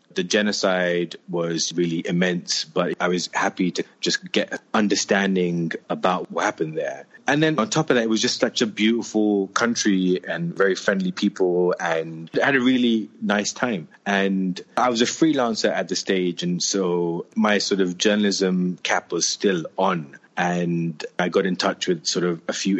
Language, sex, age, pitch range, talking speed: English, male, 30-49, 85-100 Hz, 185 wpm